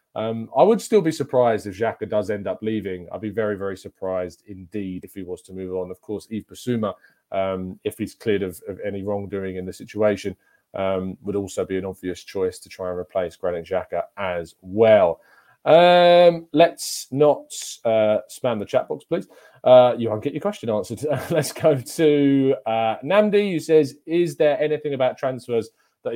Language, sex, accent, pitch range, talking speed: English, male, British, 105-130 Hz, 190 wpm